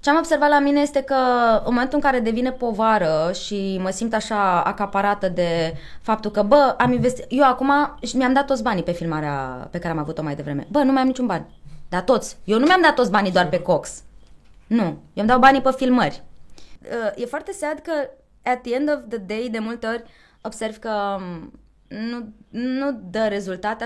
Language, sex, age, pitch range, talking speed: Romanian, female, 20-39, 185-250 Hz, 205 wpm